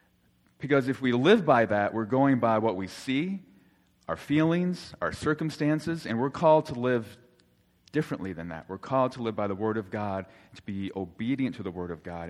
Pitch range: 90-125 Hz